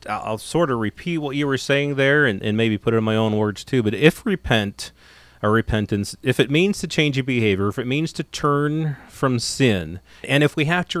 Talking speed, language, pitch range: 235 wpm, English, 110-145 Hz